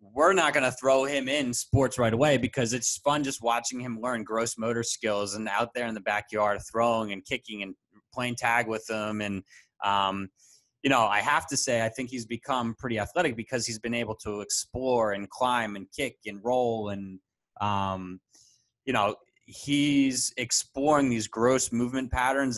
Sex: male